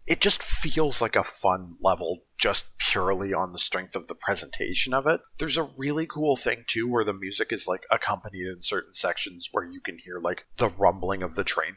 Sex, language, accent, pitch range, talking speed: male, English, American, 110-150 Hz, 215 wpm